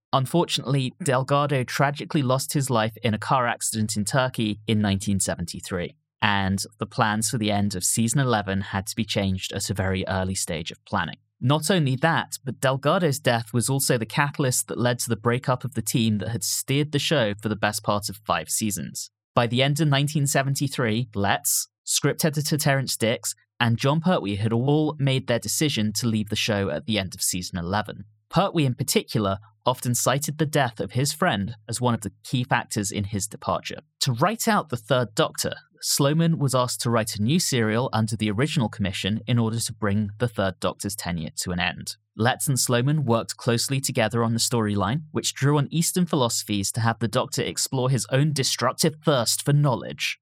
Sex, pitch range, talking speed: male, 105-140 Hz, 195 wpm